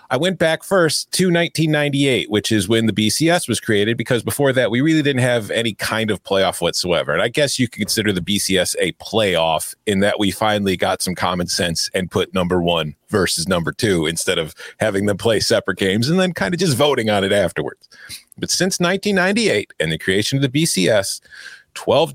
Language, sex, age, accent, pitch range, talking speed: English, male, 40-59, American, 110-165 Hz, 205 wpm